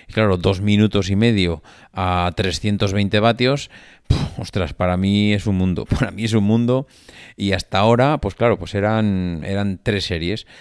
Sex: male